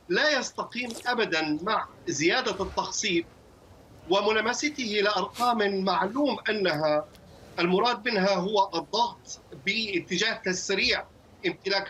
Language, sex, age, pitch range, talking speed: Arabic, male, 50-69, 180-240 Hz, 85 wpm